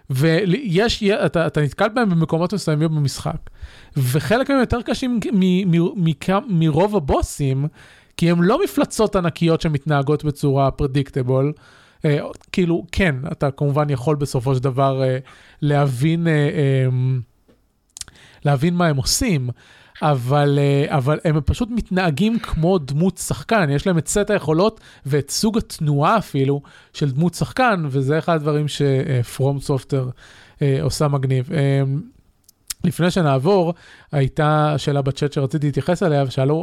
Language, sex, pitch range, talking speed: Hebrew, male, 140-180 Hz, 135 wpm